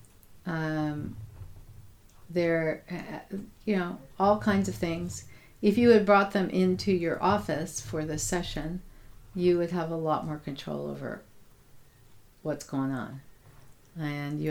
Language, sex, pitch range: English, female, 150-190 Hz